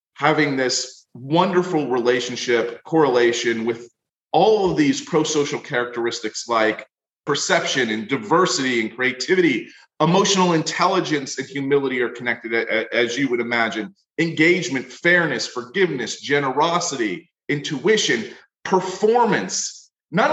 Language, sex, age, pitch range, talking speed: English, male, 30-49, 125-175 Hz, 100 wpm